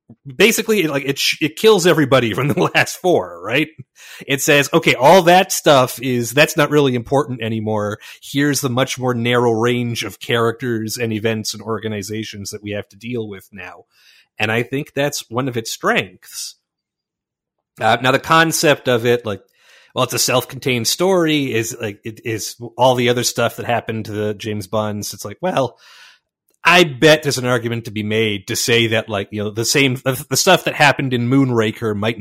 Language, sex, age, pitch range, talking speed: English, male, 30-49, 110-135 Hz, 195 wpm